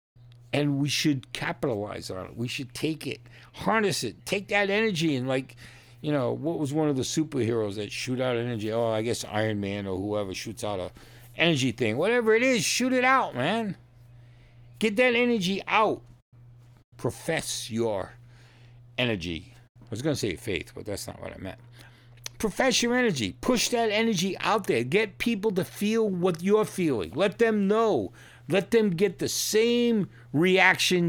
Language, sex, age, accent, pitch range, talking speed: English, male, 60-79, American, 120-195 Hz, 175 wpm